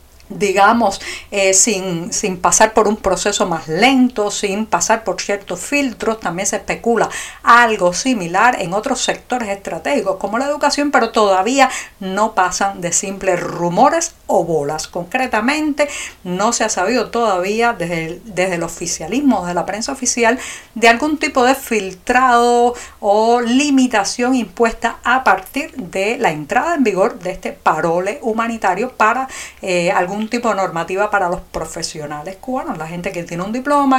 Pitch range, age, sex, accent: 185-245 Hz, 50-69, female, American